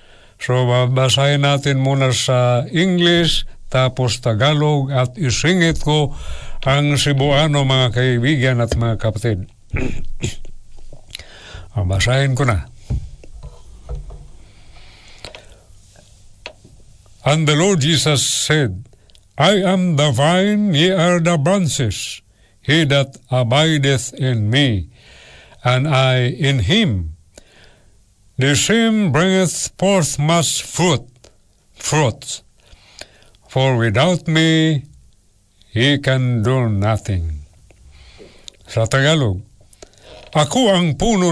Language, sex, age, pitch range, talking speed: Filipino, male, 60-79, 105-150 Hz, 90 wpm